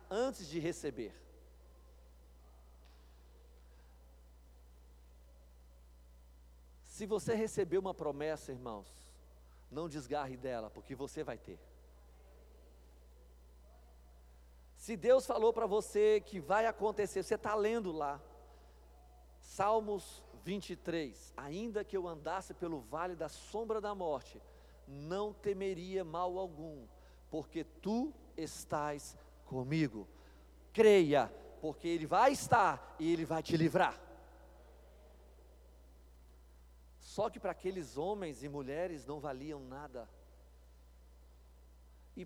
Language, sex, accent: Portuguese, male, Brazilian